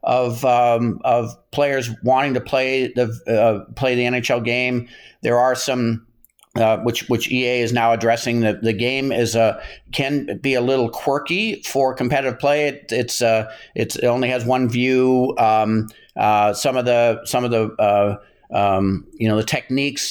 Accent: American